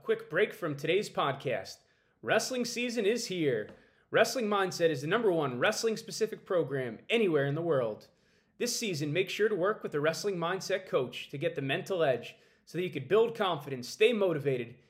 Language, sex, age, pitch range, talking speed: English, male, 30-49, 150-210 Hz, 185 wpm